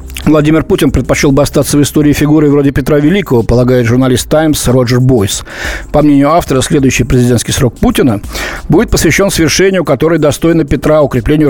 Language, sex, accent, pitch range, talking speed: Russian, male, native, 125-160 Hz, 155 wpm